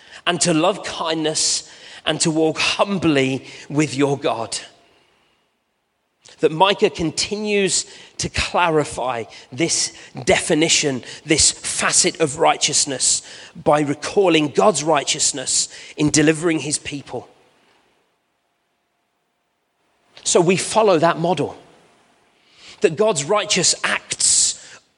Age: 40-59